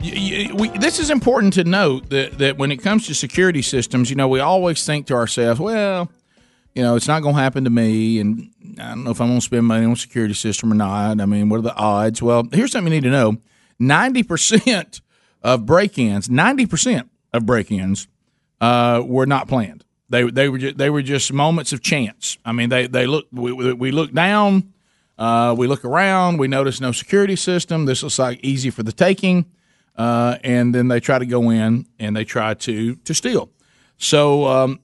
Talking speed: 215 wpm